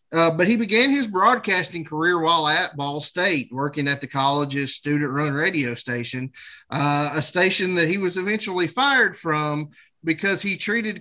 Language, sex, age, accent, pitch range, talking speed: English, male, 30-49, American, 145-190 Hz, 165 wpm